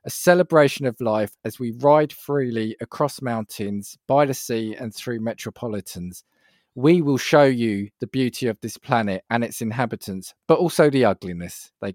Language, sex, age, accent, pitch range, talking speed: English, male, 20-39, British, 110-135 Hz, 165 wpm